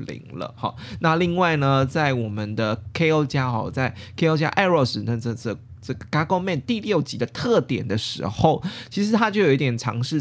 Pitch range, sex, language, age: 120-155 Hz, male, Chinese, 20-39